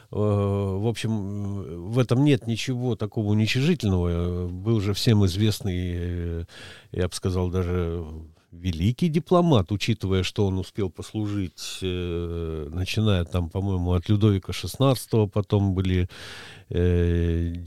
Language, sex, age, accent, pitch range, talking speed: Russian, male, 50-69, native, 90-115 Hz, 110 wpm